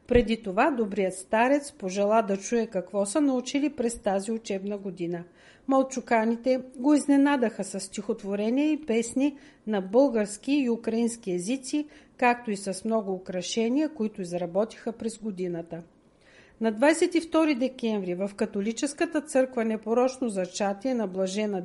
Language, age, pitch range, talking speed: Bulgarian, 50-69, 200-265 Hz, 125 wpm